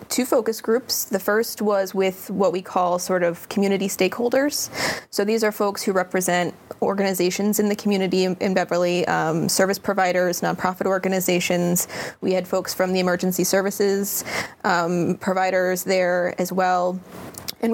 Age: 20-39